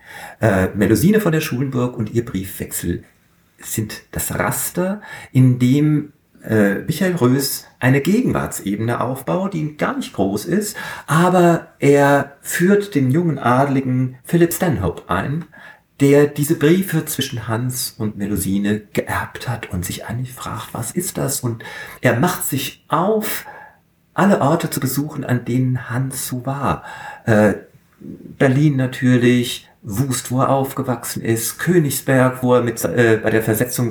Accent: German